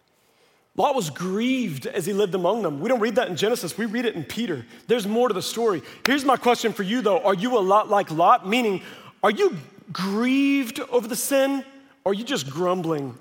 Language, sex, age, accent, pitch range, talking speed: English, male, 40-59, American, 195-265 Hz, 220 wpm